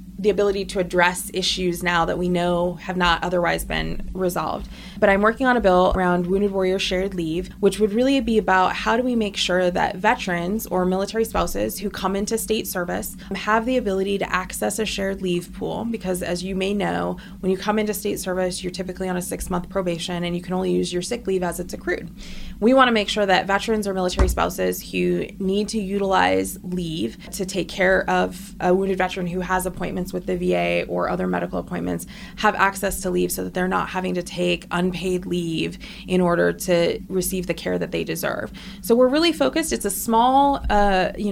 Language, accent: English, American